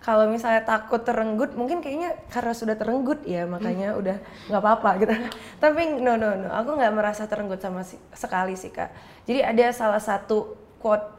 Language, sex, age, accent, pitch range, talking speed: Indonesian, female, 20-39, native, 190-240 Hz, 175 wpm